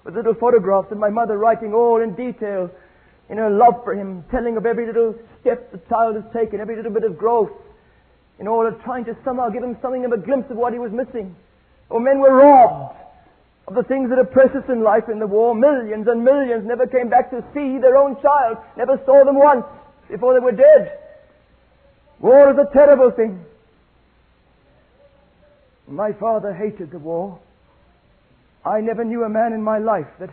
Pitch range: 185-230 Hz